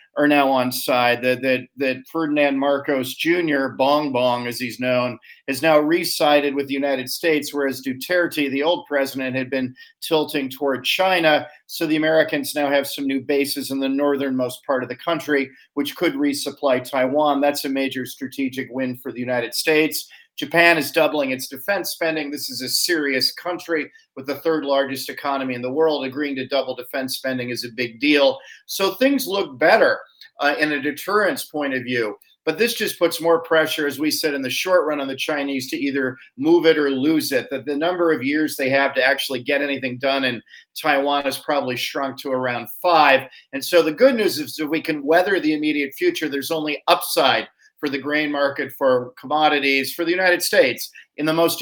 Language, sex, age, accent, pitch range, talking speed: English, male, 40-59, American, 130-155 Hz, 195 wpm